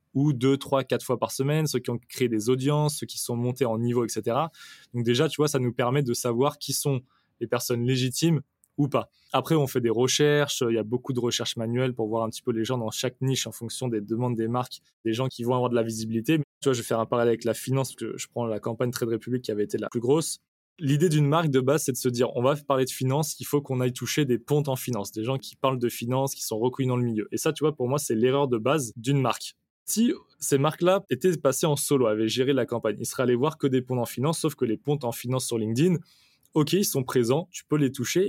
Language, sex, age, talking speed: French, male, 20-39, 280 wpm